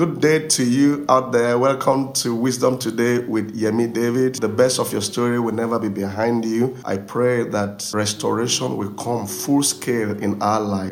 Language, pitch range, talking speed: English, 100-120 Hz, 185 wpm